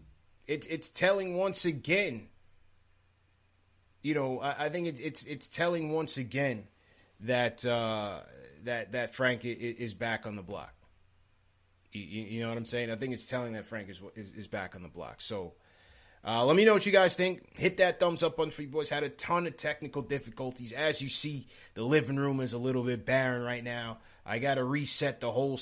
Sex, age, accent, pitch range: male, 30-49, American, 110-145 Hz